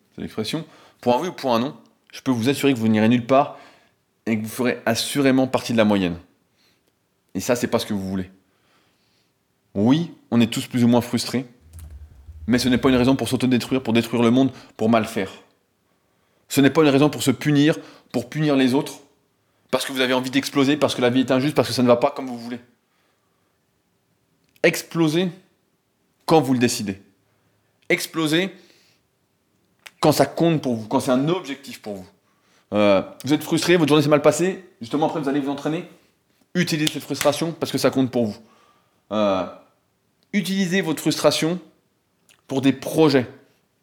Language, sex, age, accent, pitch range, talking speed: French, male, 20-39, French, 115-145 Hz, 190 wpm